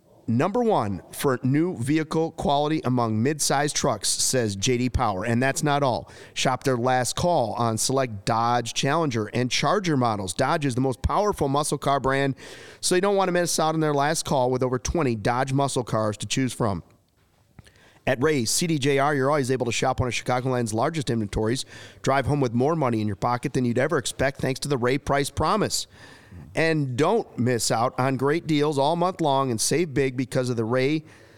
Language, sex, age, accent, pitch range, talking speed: English, male, 40-59, American, 120-150 Hz, 200 wpm